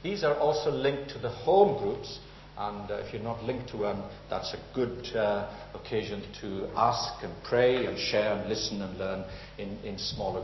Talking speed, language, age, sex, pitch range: 195 wpm, English, 60-79, male, 105-140 Hz